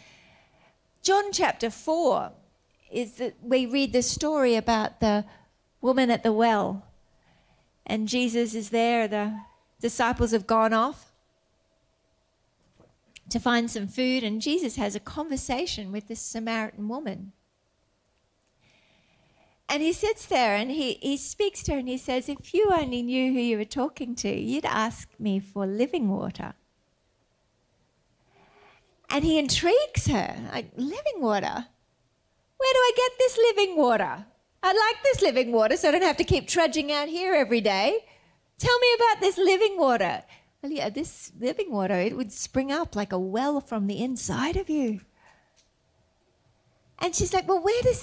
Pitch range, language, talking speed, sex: 225-335 Hz, English, 155 wpm, female